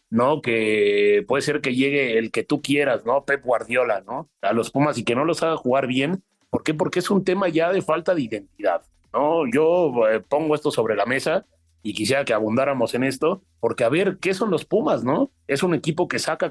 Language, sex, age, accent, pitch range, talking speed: Spanish, male, 30-49, Mexican, 120-175 Hz, 225 wpm